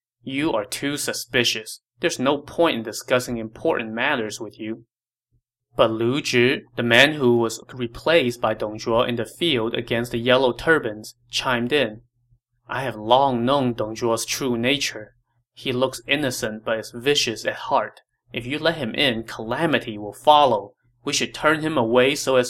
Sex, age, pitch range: male, 20-39, 115-130 Hz